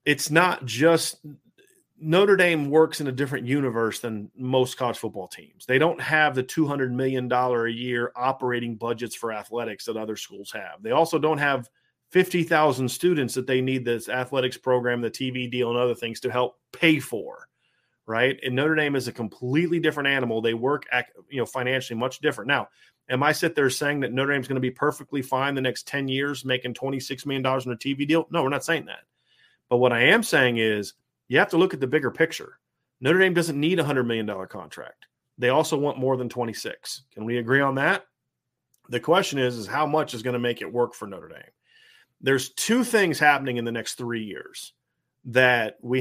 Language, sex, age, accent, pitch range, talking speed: English, male, 30-49, American, 120-150 Hz, 210 wpm